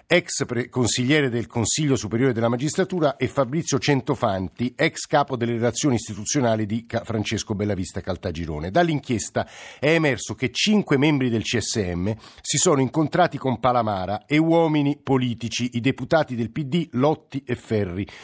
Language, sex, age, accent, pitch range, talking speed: Italian, male, 50-69, native, 115-145 Hz, 140 wpm